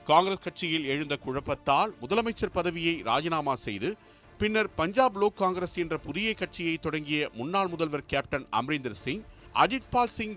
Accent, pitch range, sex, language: native, 155-205 Hz, male, Tamil